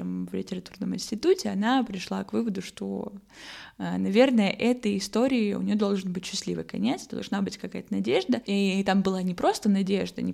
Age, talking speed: 20-39, 165 wpm